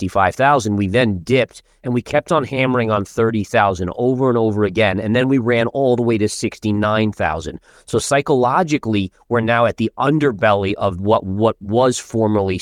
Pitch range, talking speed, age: 95-120 Hz, 165 wpm, 30-49